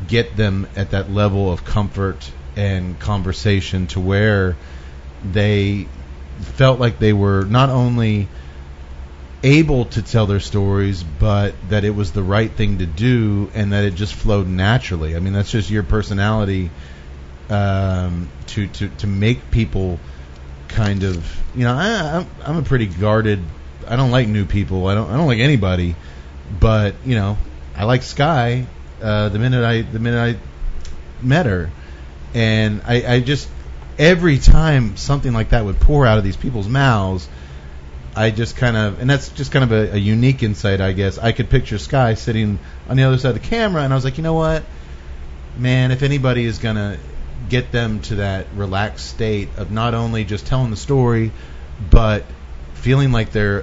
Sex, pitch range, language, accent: male, 85-115 Hz, English, American